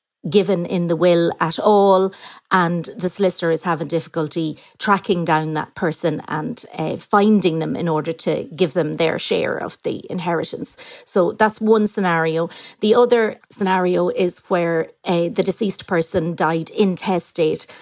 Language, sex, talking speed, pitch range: English, female, 150 wpm, 170-205 Hz